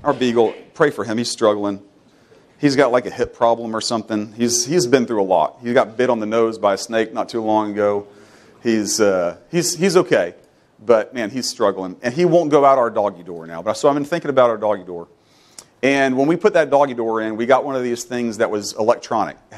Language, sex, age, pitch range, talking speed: English, male, 40-59, 115-150 Hz, 240 wpm